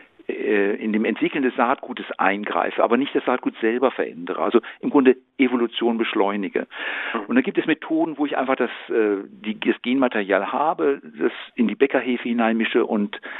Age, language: 50-69, German